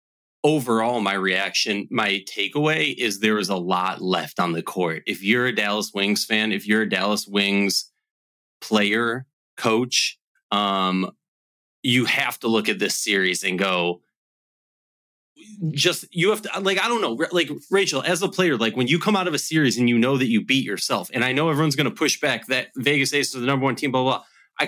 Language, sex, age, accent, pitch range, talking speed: English, male, 30-49, American, 110-150 Hz, 205 wpm